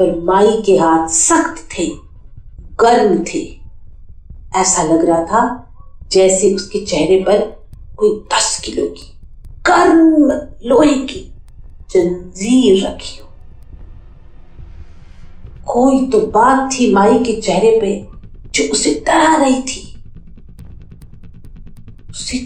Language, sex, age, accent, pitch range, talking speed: Hindi, female, 50-69, native, 175-295 Hz, 105 wpm